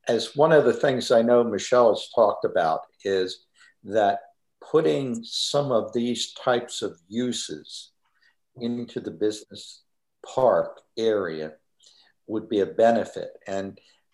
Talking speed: 125 wpm